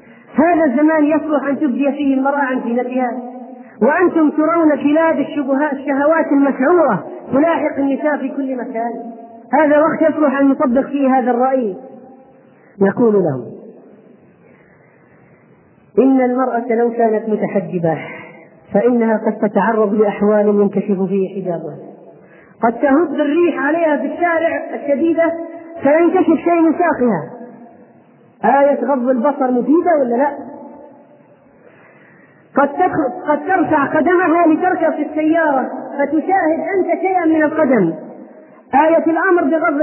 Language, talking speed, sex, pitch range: Arabic, 115 wpm, female, 245-325 Hz